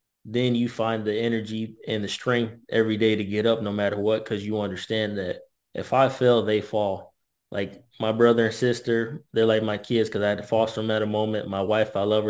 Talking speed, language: 235 wpm, English